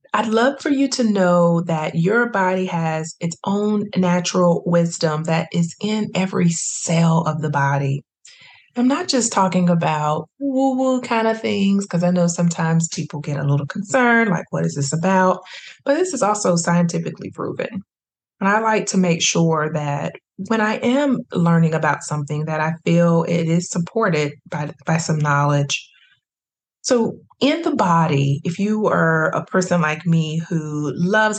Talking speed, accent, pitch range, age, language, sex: 165 wpm, American, 155-195 Hz, 20-39, English, female